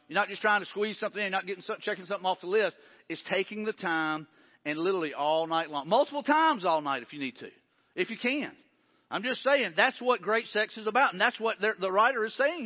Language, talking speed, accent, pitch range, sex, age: English, 250 wpm, American, 185-260 Hz, male, 40-59